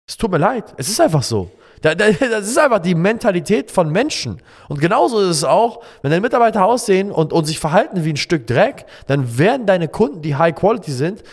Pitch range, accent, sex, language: 125-185 Hz, German, male, German